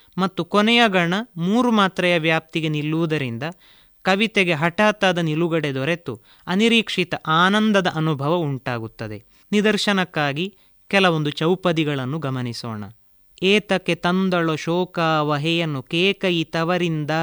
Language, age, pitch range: Kannada, 30-49, 140-180 Hz